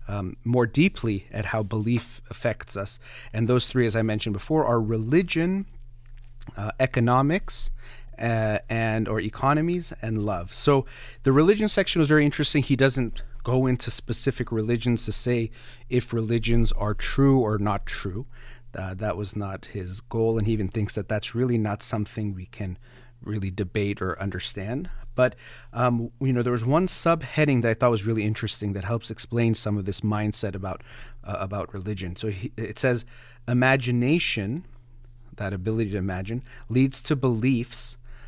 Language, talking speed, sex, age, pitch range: English, 160 wpm, male, 30-49, 105-125 Hz